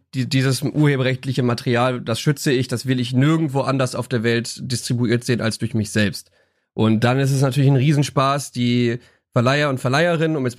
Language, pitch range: German, 120-135 Hz